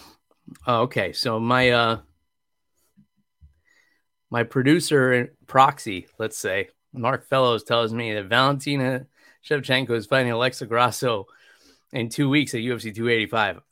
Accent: American